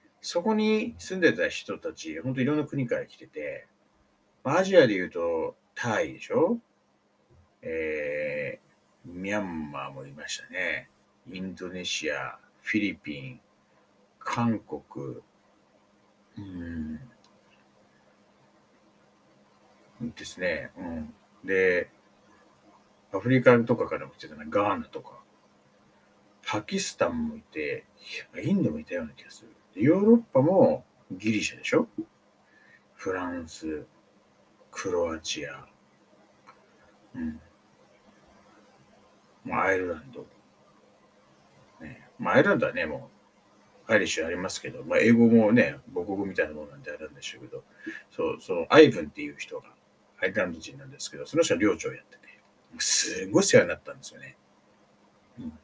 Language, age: Japanese, 60-79